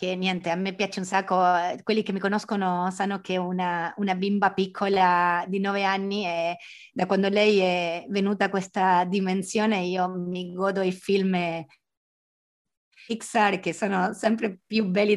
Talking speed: 160 wpm